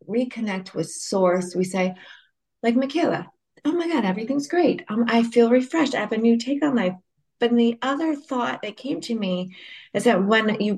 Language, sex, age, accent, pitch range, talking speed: English, female, 30-49, American, 175-230 Hz, 195 wpm